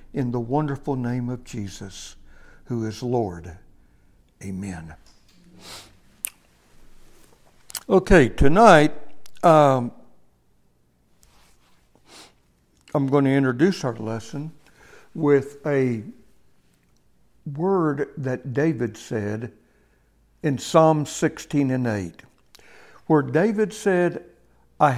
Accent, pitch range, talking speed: American, 100-160 Hz, 80 wpm